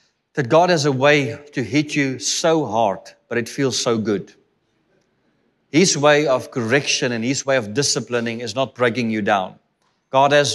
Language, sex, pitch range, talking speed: English, male, 120-140 Hz, 175 wpm